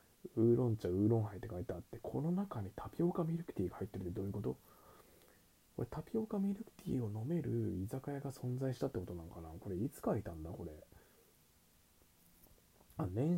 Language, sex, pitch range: Japanese, male, 85-115 Hz